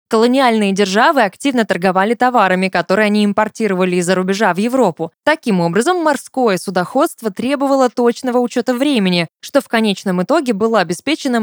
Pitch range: 190-265 Hz